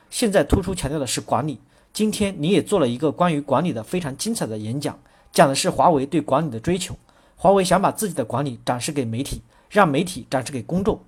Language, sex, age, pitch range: Chinese, male, 40-59, 135-195 Hz